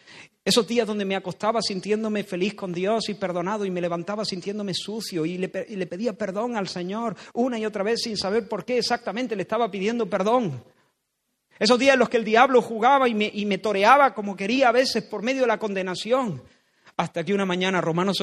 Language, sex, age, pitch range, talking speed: Spanish, male, 40-59, 180-225 Hz, 205 wpm